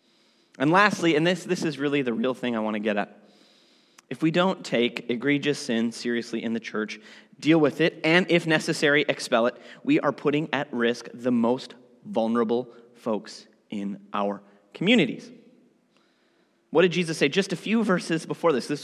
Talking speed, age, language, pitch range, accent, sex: 180 wpm, 30-49, English, 120-170 Hz, American, male